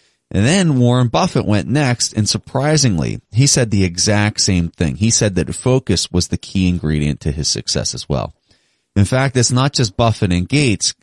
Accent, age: American, 30-49